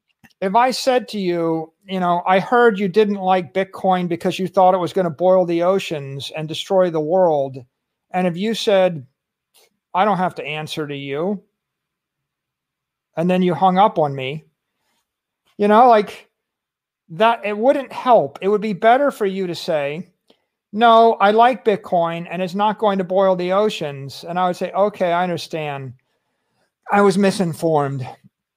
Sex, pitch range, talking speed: male, 165-210 Hz, 170 wpm